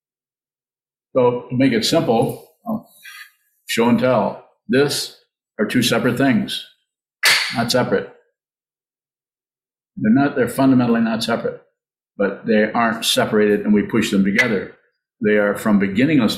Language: English